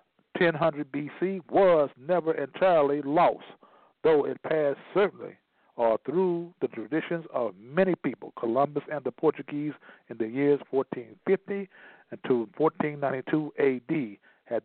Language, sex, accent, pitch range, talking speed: English, male, American, 130-160 Hz, 120 wpm